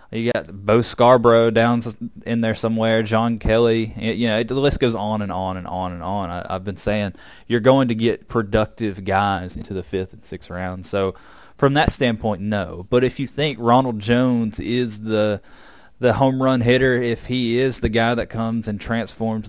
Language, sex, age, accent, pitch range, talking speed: English, male, 20-39, American, 95-115 Hz, 205 wpm